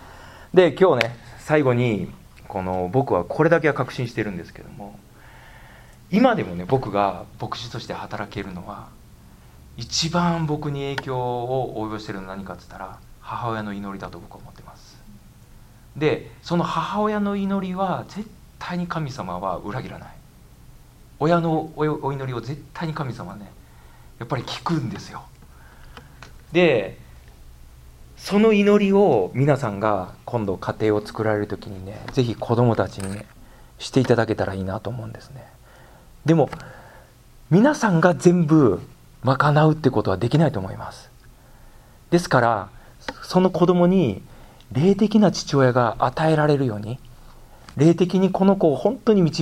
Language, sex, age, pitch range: Japanese, male, 40-59, 110-160 Hz